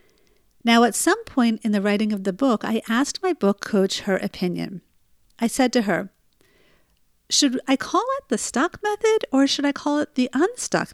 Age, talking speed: 50-69, 190 wpm